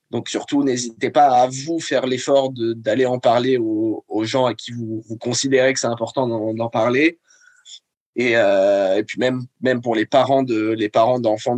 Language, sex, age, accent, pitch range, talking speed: French, male, 20-39, French, 115-140 Hz, 200 wpm